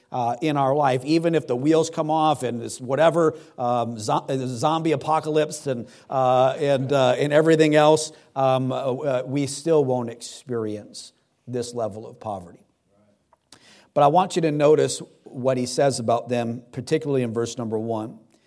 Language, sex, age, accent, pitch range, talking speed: English, male, 50-69, American, 125-155 Hz, 160 wpm